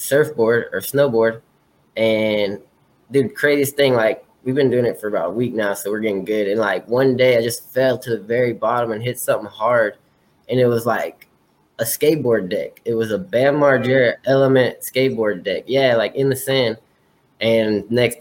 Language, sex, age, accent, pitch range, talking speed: English, male, 10-29, American, 115-130 Hz, 190 wpm